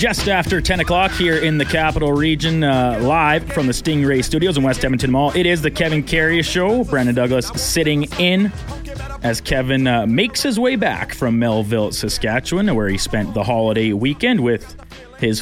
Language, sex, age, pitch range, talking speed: English, male, 30-49, 120-160 Hz, 185 wpm